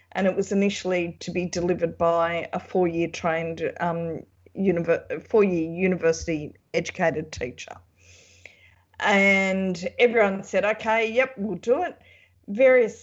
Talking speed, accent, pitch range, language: 115 wpm, Australian, 170-210 Hz, English